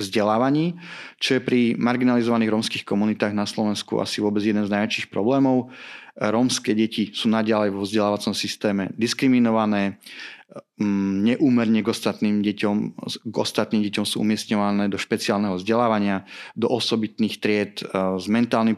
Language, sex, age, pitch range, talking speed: Slovak, male, 30-49, 100-115 Hz, 130 wpm